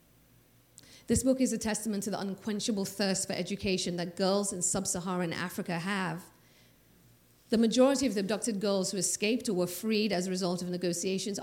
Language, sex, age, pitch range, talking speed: English, female, 40-59, 175-205 Hz, 180 wpm